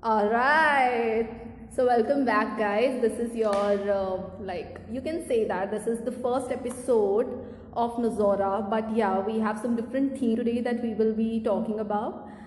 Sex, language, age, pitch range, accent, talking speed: female, English, 20-39, 210-240 Hz, Indian, 175 wpm